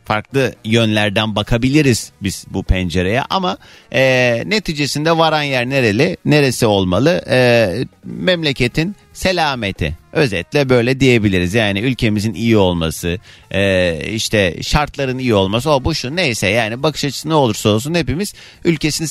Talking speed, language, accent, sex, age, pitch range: 130 wpm, Turkish, native, male, 40-59, 100-140 Hz